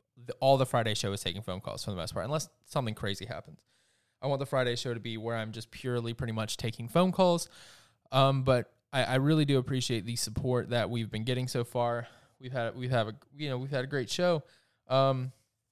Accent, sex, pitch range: American, male, 120-135 Hz